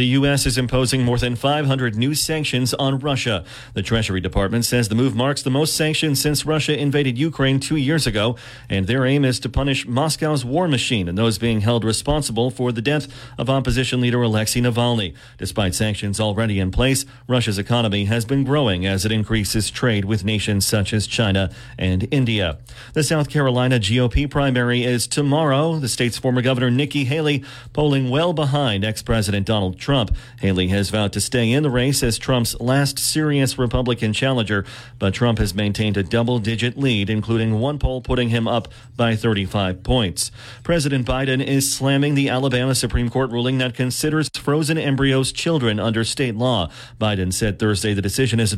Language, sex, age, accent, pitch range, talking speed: English, male, 40-59, American, 110-135 Hz, 180 wpm